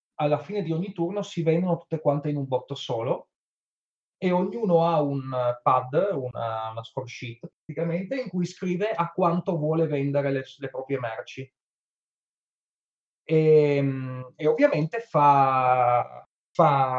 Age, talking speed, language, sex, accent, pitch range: 30-49, 135 wpm, Italian, male, native, 135-165 Hz